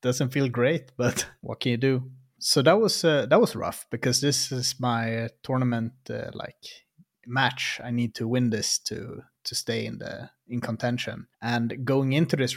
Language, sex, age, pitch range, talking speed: English, male, 30-49, 115-130 Hz, 185 wpm